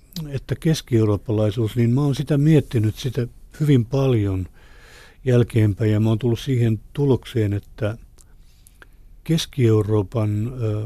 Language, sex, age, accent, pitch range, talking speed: Finnish, male, 60-79, native, 105-120 Hz, 105 wpm